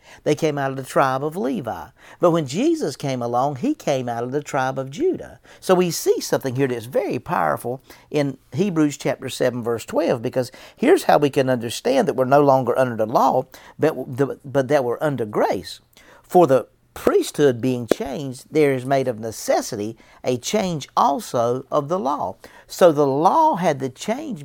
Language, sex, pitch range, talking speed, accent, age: English, male, 125-175 Hz, 190 wpm, American, 50-69